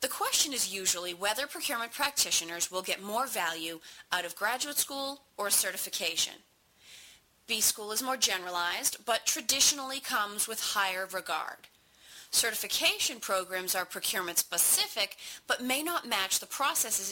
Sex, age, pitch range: female, 30-49, 185-275 Hz